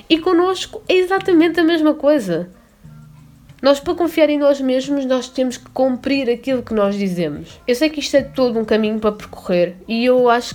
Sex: female